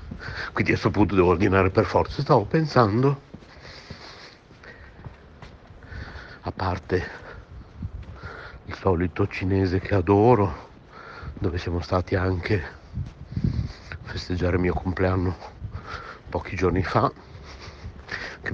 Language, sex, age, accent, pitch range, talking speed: Italian, male, 60-79, native, 95-120 Hz, 95 wpm